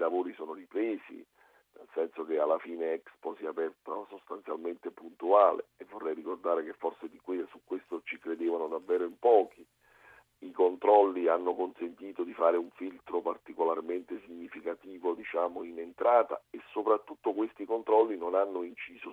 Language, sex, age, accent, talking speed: Italian, male, 50-69, native, 150 wpm